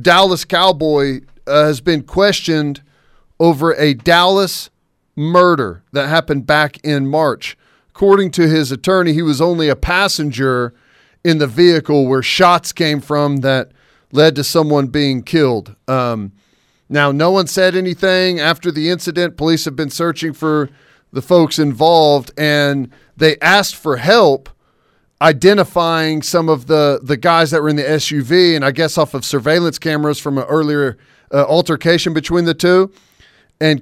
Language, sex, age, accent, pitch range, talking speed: English, male, 40-59, American, 145-175 Hz, 155 wpm